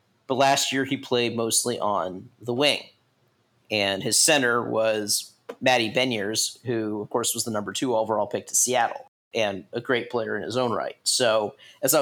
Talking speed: 185 wpm